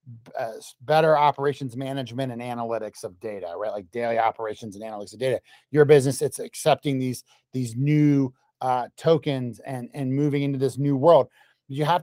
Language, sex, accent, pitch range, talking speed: English, male, American, 130-160 Hz, 170 wpm